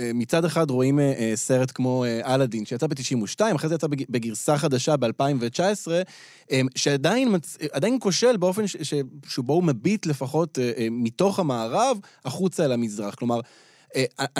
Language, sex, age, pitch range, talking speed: Hebrew, male, 20-39, 120-165 Hz, 145 wpm